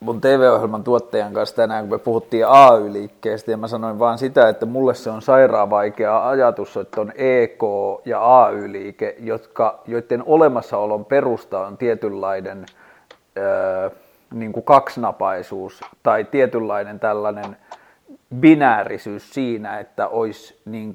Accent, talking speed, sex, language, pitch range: native, 125 wpm, male, Finnish, 105-130 Hz